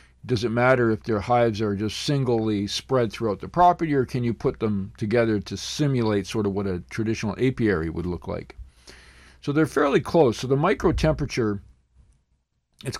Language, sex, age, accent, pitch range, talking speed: English, male, 50-69, American, 95-130 Hz, 180 wpm